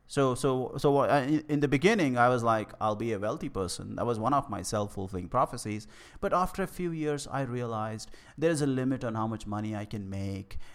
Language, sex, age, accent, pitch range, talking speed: English, male, 30-49, Indian, 100-130 Hz, 210 wpm